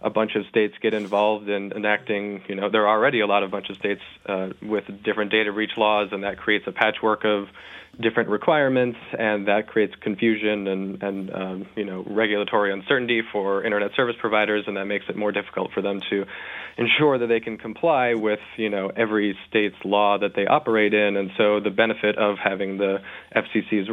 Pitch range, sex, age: 100-110 Hz, male, 40-59